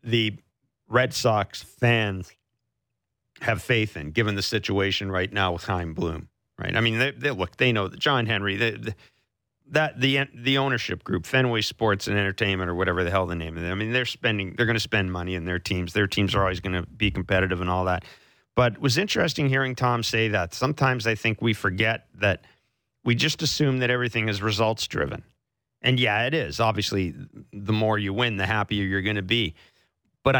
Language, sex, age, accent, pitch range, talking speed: English, male, 40-59, American, 100-125 Hz, 210 wpm